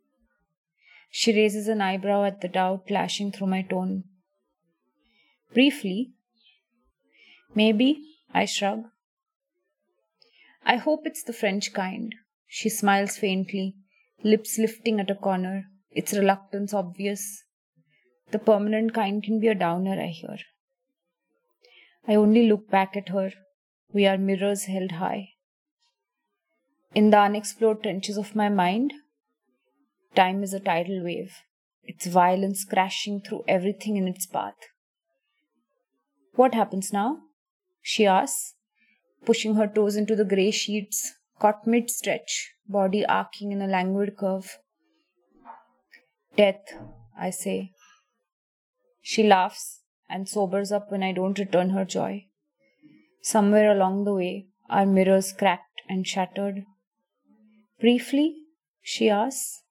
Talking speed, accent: 120 wpm, Indian